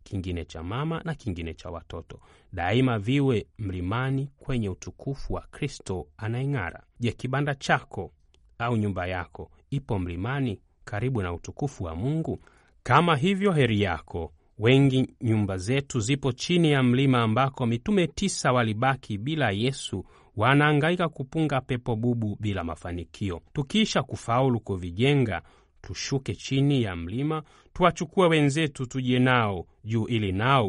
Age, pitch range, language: 30-49, 95-140 Hz, Swahili